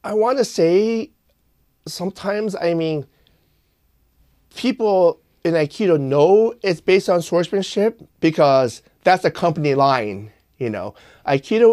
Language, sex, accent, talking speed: English, male, American, 120 wpm